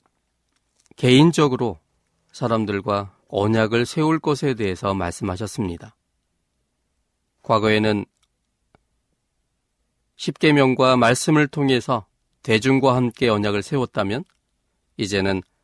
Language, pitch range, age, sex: Korean, 100-135 Hz, 40-59, male